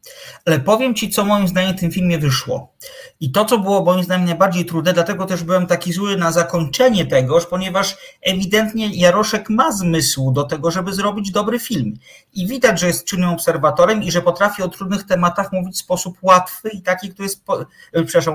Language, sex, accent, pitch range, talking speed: Polish, male, native, 145-190 Hz, 185 wpm